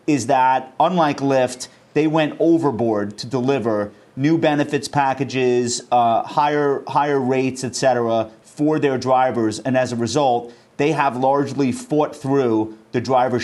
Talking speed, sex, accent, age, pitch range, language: 140 wpm, male, American, 30-49, 120-145 Hz, English